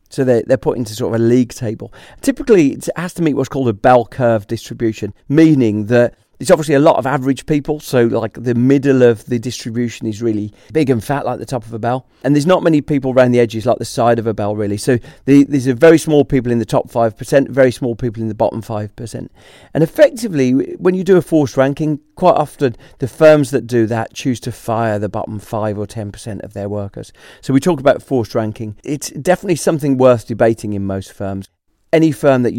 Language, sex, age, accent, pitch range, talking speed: English, male, 40-59, British, 115-145 Hz, 230 wpm